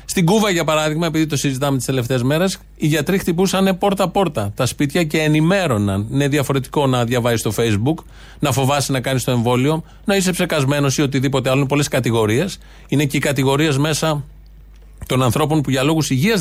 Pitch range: 120-165 Hz